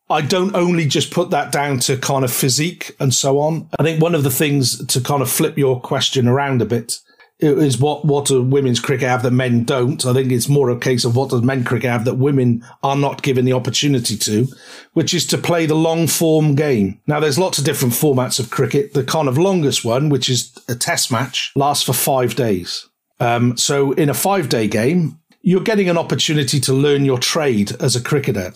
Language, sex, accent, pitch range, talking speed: English, male, British, 130-155 Hz, 220 wpm